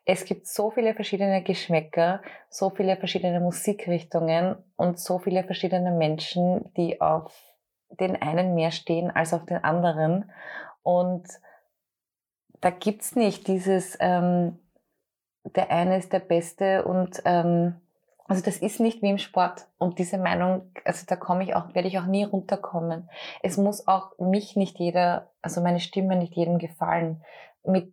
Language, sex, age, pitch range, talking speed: German, female, 20-39, 170-190 Hz, 155 wpm